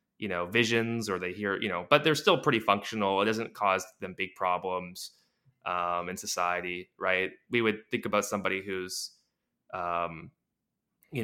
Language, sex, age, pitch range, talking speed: English, male, 20-39, 95-125 Hz, 165 wpm